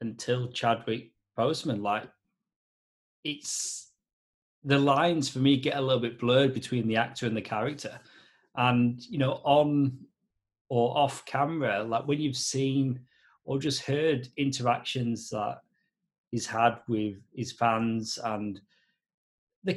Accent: British